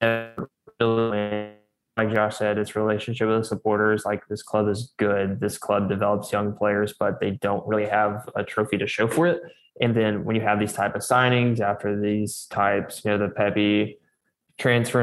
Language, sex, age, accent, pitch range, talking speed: English, male, 20-39, American, 105-115 Hz, 185 wpm